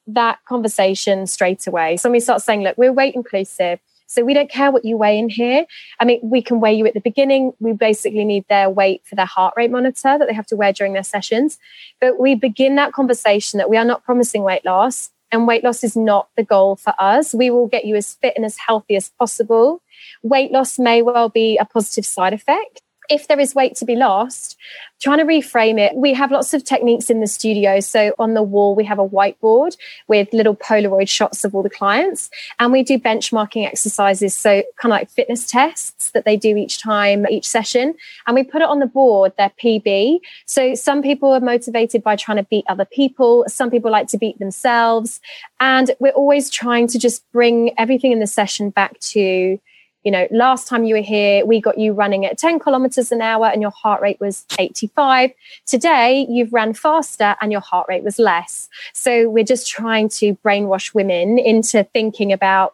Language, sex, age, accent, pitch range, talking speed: English, female, 20-39, British, 205-255 Hz, 215 wpm